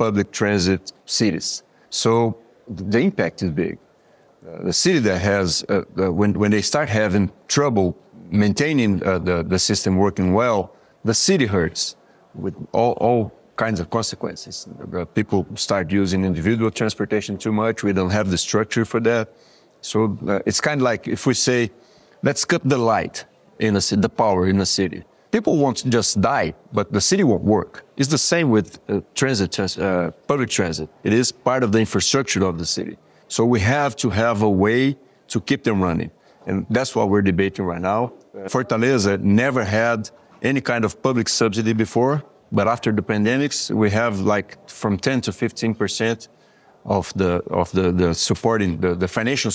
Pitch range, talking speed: 95-120 Hz, 180 wpm